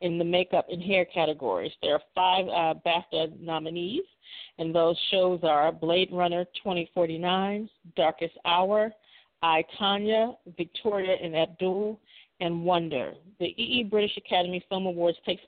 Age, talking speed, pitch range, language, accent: 40-59, 135 wpm, 170-210 Hz, English, American